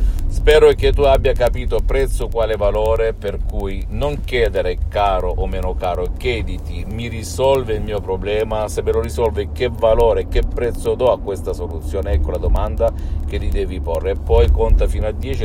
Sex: male